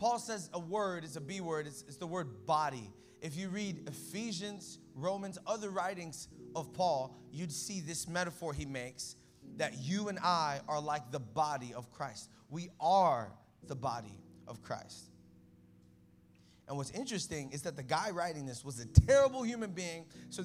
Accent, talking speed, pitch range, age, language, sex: American, 175 wpm, 150-210 Hz, 20-39, English, male